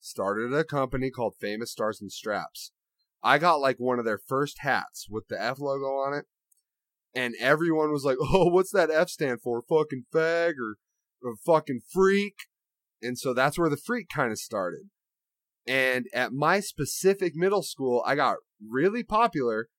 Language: English